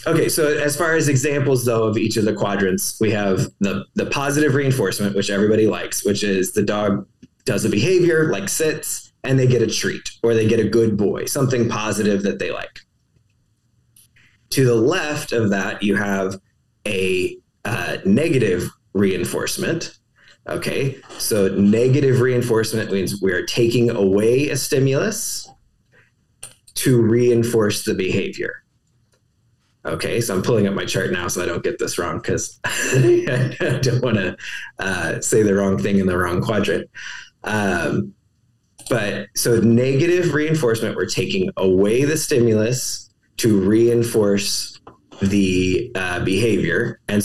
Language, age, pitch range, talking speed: English, 20-39, 100-130 Hz, 145 wpm